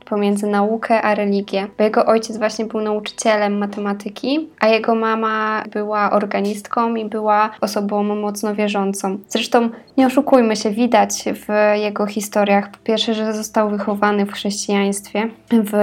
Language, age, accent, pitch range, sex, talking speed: Polish, 20-39, native, 195-210 Hz, female, 140 wpm